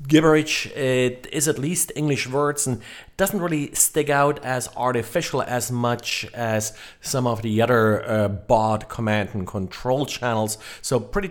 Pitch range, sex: 115-140 Hz, male